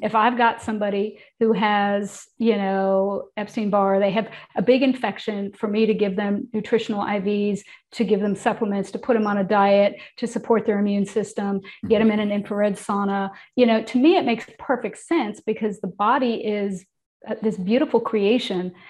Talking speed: 180 wpm